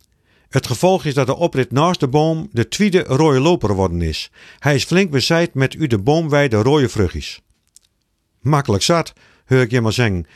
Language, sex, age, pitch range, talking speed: Dutch, male, 50-69, 115-170 Hz, 185 wpm